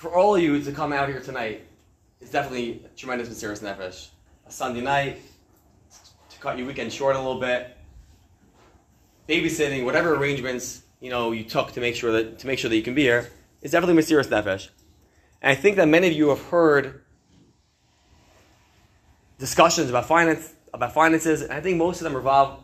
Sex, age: male, 20-39